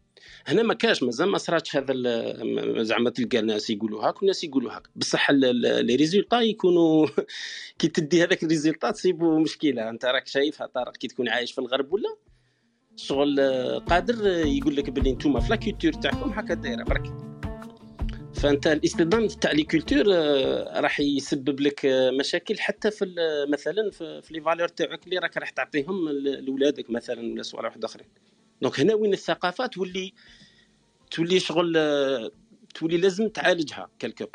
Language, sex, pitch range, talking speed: Arabic, male, 125-185 Hz, 140 wpm